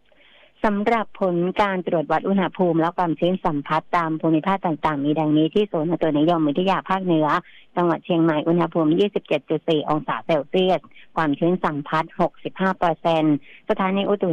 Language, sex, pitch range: Thai, female, 155-185 Hz